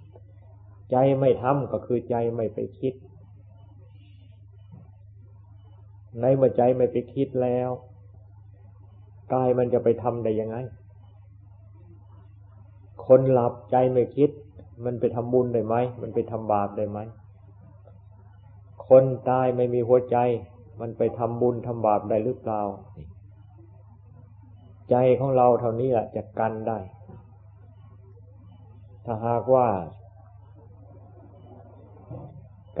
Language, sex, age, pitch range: Thai, male, 20-39, 100-125 Hz